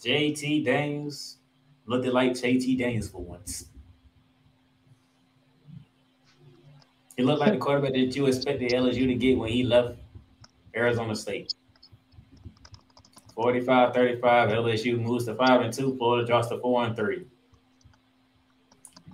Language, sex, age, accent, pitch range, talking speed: English, male, 20-39, American, 120-140 Hz, 105 wpm